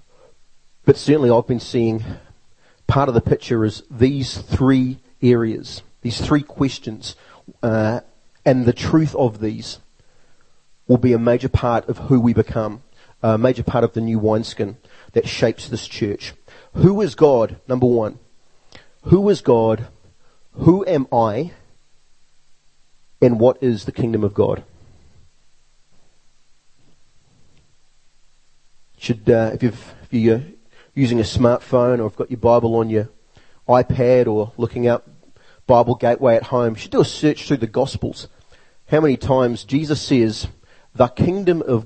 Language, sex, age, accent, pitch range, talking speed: English, male, 40-59, Australian, 110-130 Hz, 140 wpm